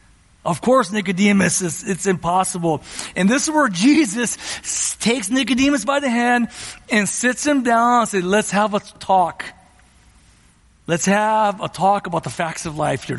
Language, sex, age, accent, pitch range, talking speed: English, male, 40-59, American, 165-215 Hz, 165 wpm